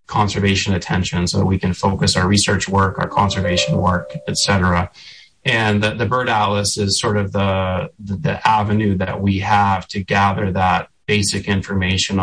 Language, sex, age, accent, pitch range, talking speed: English, male, 20-39, American, 95-105 Hz, 170 wpm